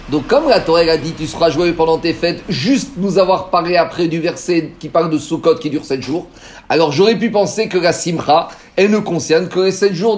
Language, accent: French, French